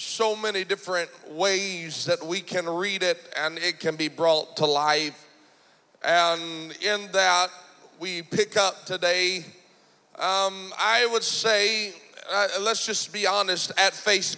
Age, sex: 40-59, male